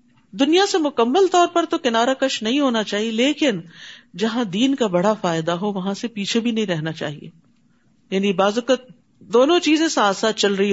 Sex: female